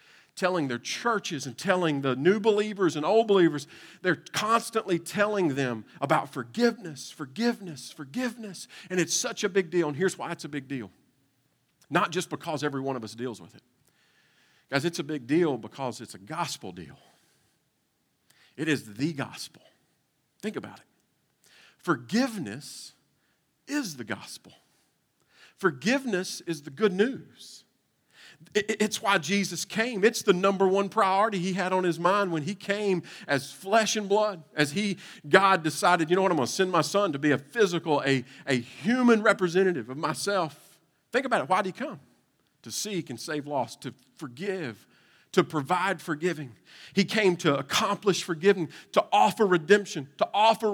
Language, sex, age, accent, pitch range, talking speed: English, male, 50-69, American, 150-205 Hz, 165 wpm